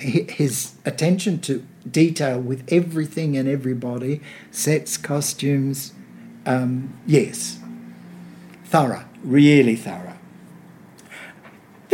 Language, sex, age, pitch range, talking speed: English, male, 60-79, 150-215 Hz, 75 wpm